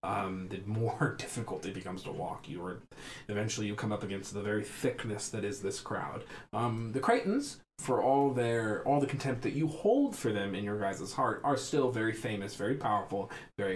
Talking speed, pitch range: 200 wpm, 105-140 Hz